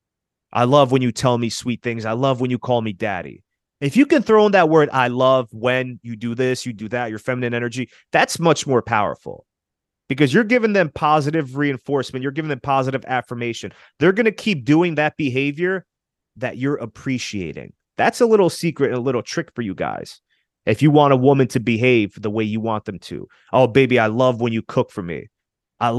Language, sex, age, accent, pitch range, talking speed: English, male, 30-49, American, 120-150 Hz, 215 wpm